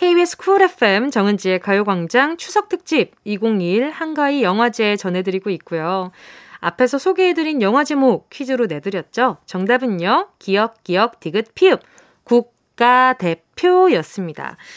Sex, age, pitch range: female, 20-39, 195-325 Hz